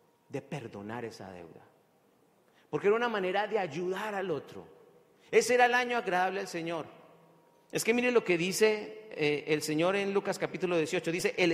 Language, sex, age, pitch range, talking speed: Spanish, male, 40-59, 165-235 Hz, 175 wpm